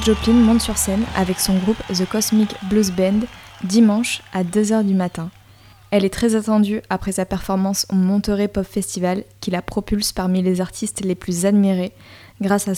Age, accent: 20-39, French